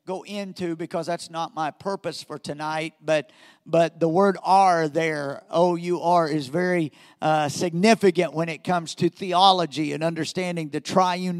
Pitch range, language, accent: 170-220 Hz, English, American